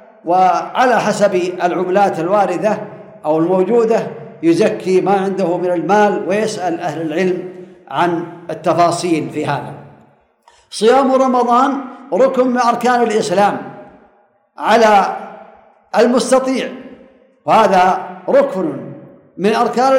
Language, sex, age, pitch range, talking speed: Arabic, male, 50-69, 180-260 Hz, 90 wpm